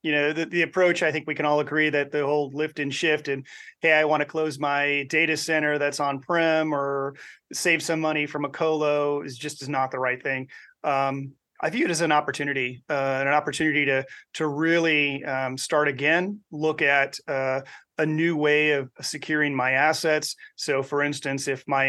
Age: 30-49